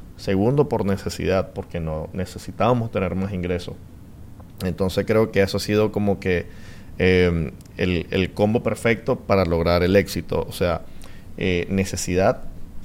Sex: male